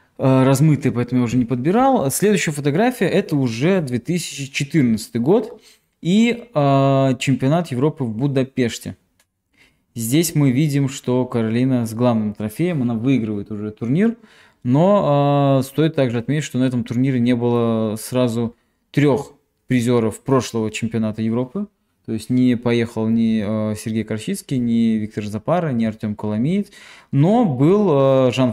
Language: Russian